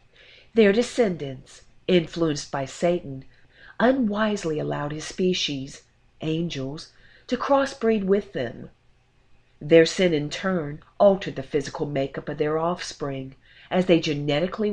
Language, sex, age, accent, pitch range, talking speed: English, female, 40-59, American, 140-190 Hz, 115 wpm